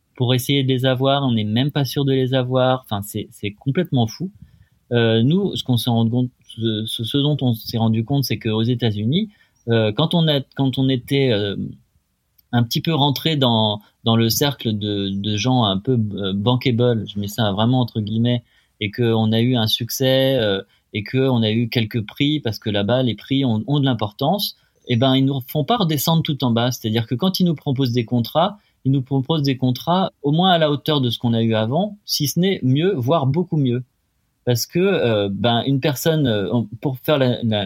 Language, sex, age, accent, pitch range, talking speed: French, male, 30-49, French, 110-140 Hz, 225 wpm